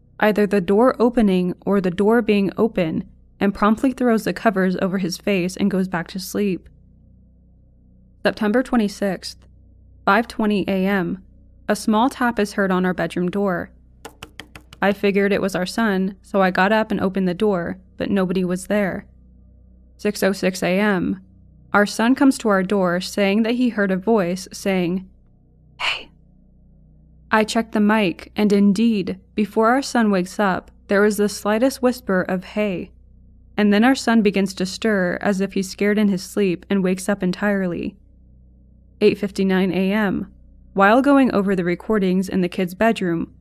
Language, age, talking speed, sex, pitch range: English, 20-39, 160 wpm, female, 185-215 Hz